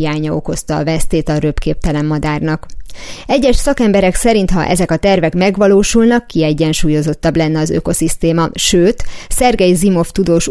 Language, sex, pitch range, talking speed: Hungarian, female, 160-190 Hz, 130 wpm